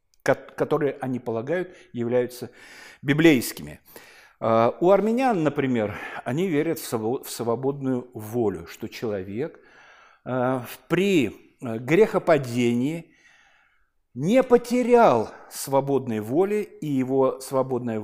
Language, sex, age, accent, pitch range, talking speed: Russian, male, 50-69, native, 125-180 Hz, 80 wpm